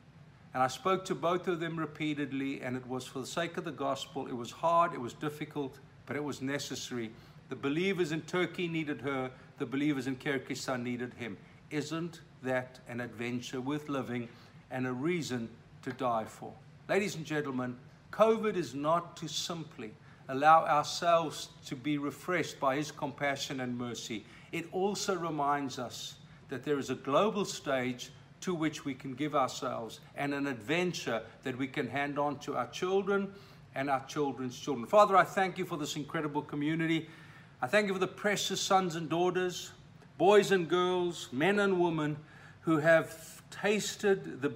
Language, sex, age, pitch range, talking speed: English, male, 50-69, 135-180 Hz, 170 wpm